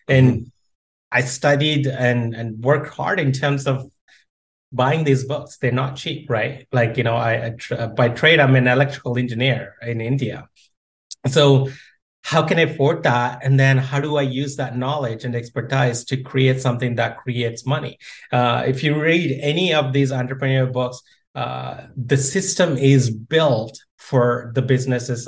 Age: 30-49